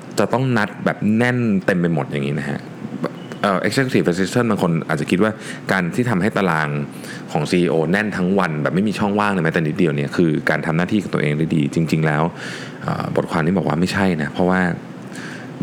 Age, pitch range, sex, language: 20-39, 75-105 Hz, male, Thai